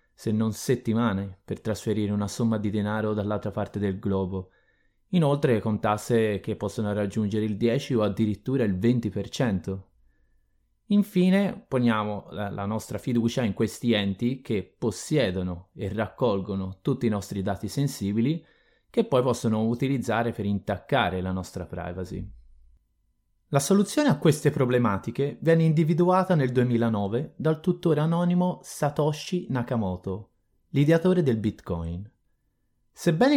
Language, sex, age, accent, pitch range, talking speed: Italian, male, 30-49, native, 100-145 Hz, 125 wpm